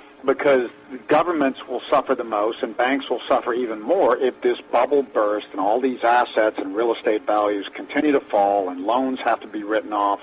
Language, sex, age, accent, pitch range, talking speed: English, male, 50-69, American, 115-170 Hz, 200 wpm